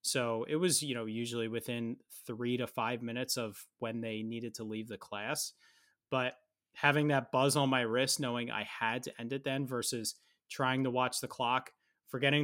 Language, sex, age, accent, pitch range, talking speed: English, male, 30-49, American, 115-135 Hz, 195 wpm